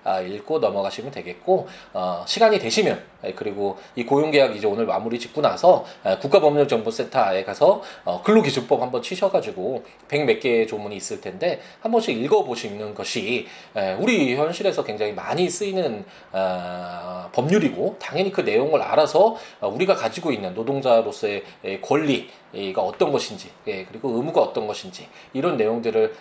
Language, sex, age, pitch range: Korean, male, 20-39, 115-185 Hz